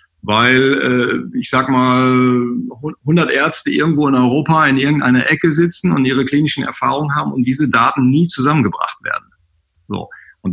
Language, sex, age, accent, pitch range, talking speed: German, male, 50-69, German, 100-125 Hz, 150 wpm